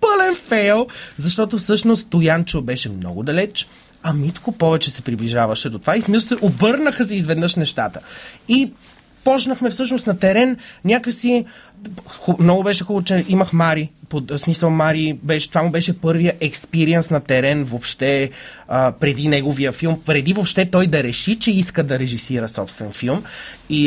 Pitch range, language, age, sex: 150-215 Hz, Bulgarian, 30-49, male